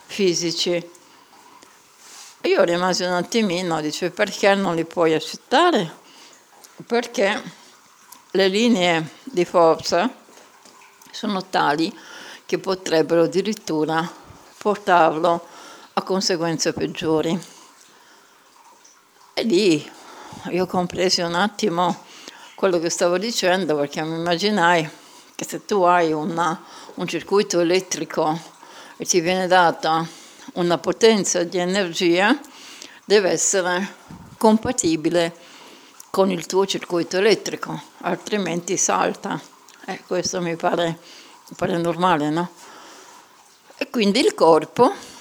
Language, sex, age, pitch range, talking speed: Italian, female, 60-79, 165-205 Hz, 100 wpm